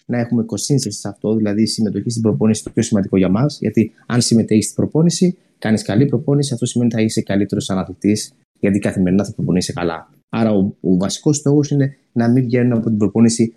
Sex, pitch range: male, 105-140 Hz